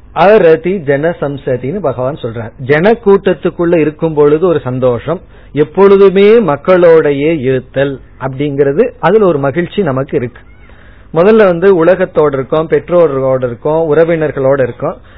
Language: Tamil